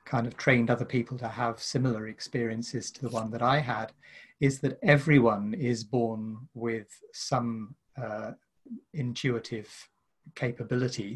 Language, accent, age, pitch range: English, British, 30-49, 120-140 Hz